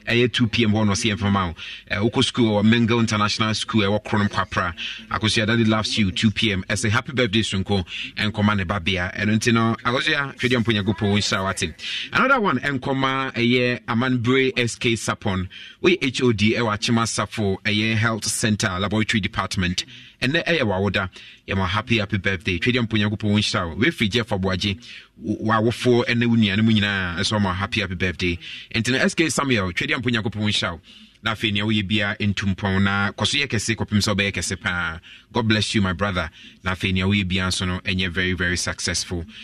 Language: English